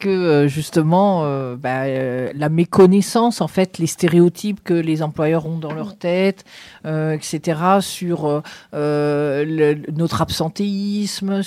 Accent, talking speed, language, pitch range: French, 130 wpm, French, 155-190 Hz